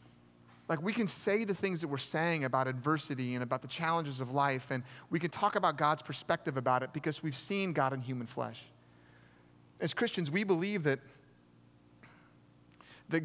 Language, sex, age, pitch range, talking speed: English, male, 30-49, 125-165 Hz, 175 wpm